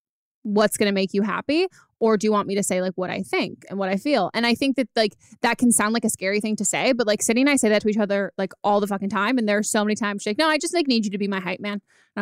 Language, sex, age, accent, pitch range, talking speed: English, female, 20-39, American, 200-240 Hz, 345 wpm